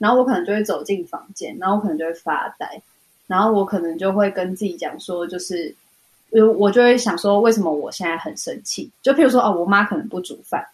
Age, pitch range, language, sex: 20-39, 190-245 Hz, Chinese, female